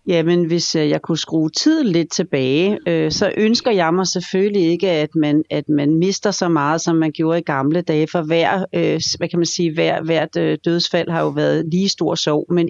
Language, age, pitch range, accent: Danish, 40-59, 165-210 Hz, native